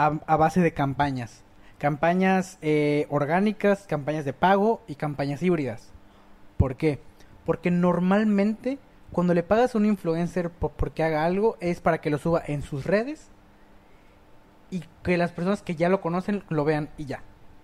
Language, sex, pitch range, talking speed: Spanish, male, 140-175 Hz, 160 wpm